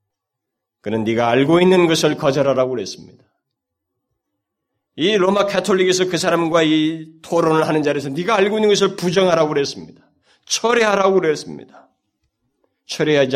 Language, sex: Korean, male